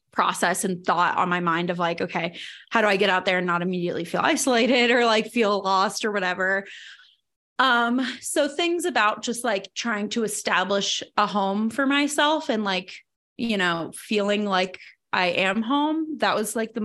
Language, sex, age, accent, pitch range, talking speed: English, female, 20-39, American, 190-235 Hz, 185 wpm